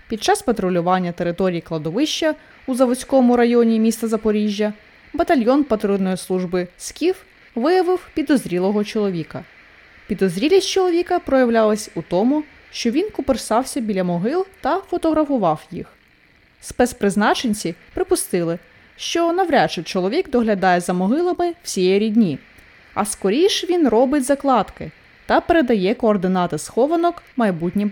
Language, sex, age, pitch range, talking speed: Ukrainian, female, 20-39, 195-310 Hz, 110 wpm